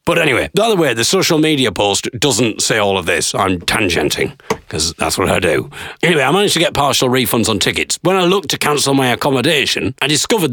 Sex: male